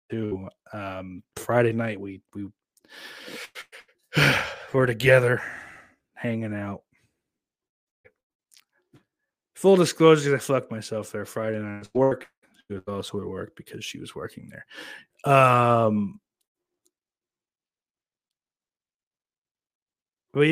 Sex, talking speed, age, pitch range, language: male, 95 wpm, 30-49, 110-145 Hz, English